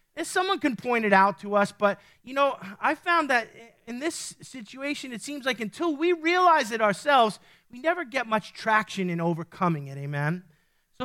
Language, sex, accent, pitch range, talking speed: English, male, American, 195-275 Hz, 190 wpm